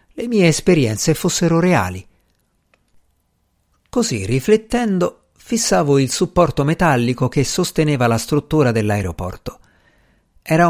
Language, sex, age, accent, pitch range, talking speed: Italian, male, 50-69, native, 110-150 Hz, 95 wpm